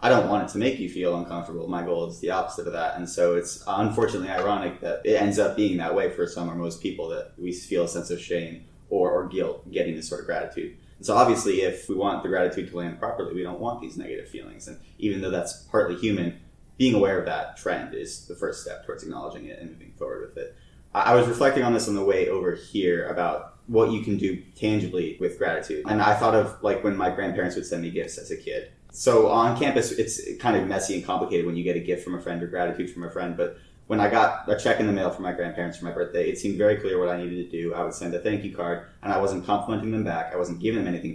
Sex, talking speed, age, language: male, 270 wpm, 20-39, English